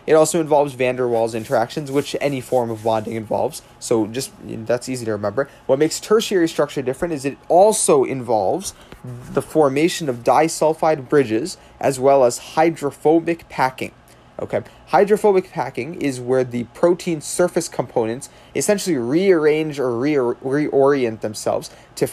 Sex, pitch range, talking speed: male, 120-155 Hz, 145 wpm